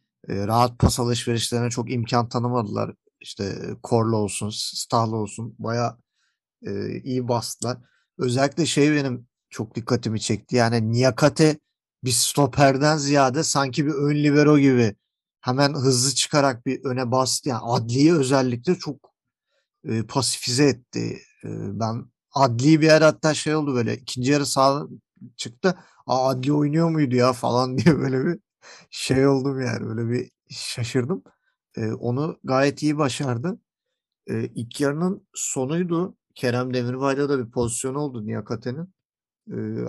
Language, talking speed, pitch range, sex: Turkish, 130 wpm, 115-140 Hz, male